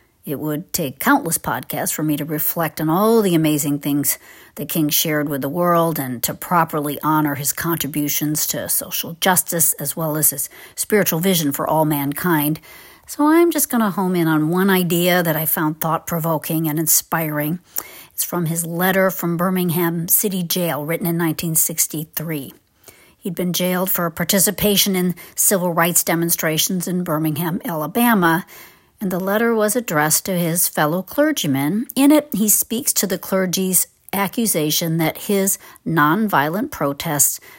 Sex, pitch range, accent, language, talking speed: female, 155-185 Hz, American, English, 155 wpm